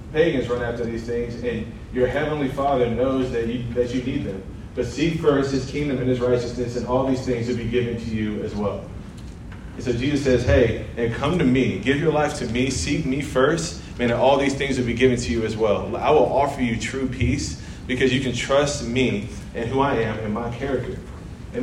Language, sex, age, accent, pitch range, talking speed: English, male, 30-49, American, 115-140 Hz, 225 wpm